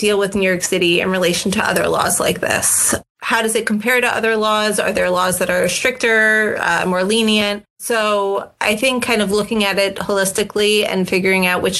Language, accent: English, American